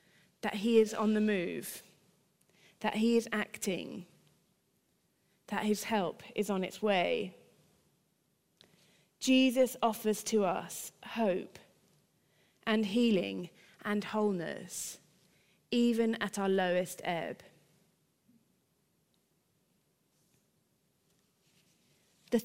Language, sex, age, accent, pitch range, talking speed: English, female, 30-49, British, 195-235 Hz, 85 wpm